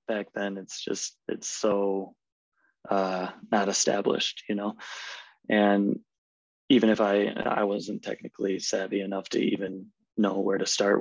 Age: 20-39